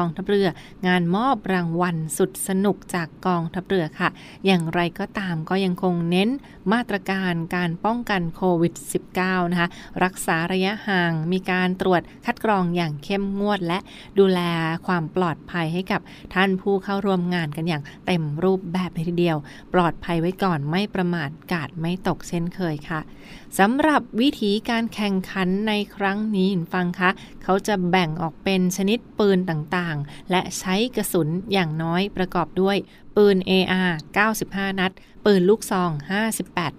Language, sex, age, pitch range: Thai, female, 20-39, 175-200 Hz